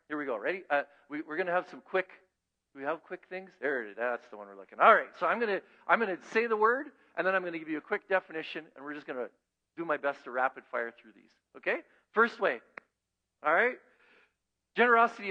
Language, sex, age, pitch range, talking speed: English, male, 50-69, 150-225 Hz, 240 wpm